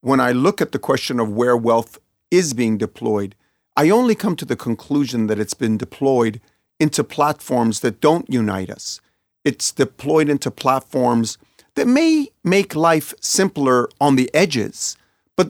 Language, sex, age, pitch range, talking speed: English, male, 40-59, 115-145 Hz, 160 wpm